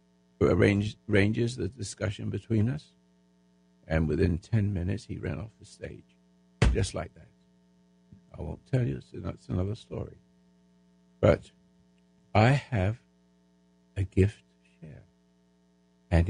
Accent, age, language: American, 60-79, English